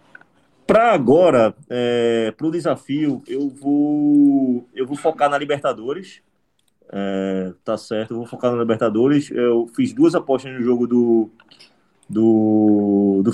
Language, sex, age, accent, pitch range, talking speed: Portuguese, male, 20-39, Brazilian, 110-140 Hz, 135 wpm